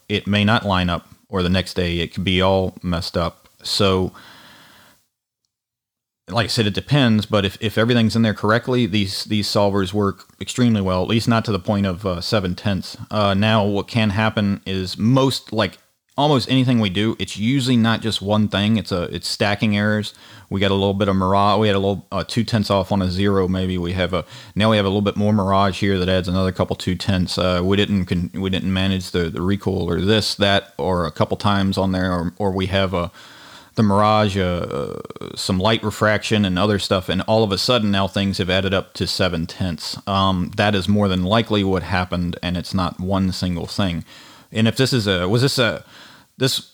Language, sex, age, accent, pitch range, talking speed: English, male, 30-49, American, 95-110 Hz, 220 wpm